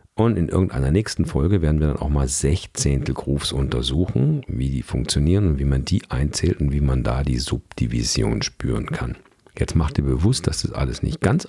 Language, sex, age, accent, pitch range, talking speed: German, male, 50-69, German, 70-100 Hz, 195 wpm